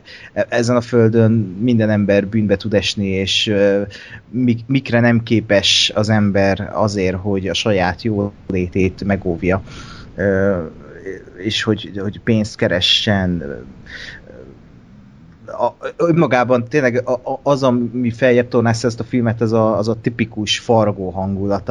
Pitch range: 100-115 Hz